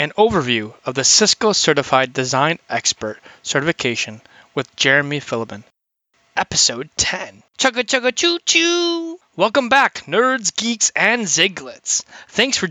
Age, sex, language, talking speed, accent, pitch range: 20-39, male, English, 115 wpm, American, 135-205 Hz